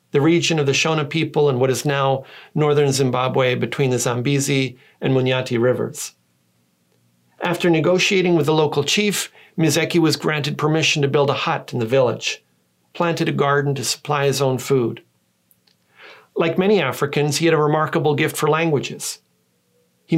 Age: 40-59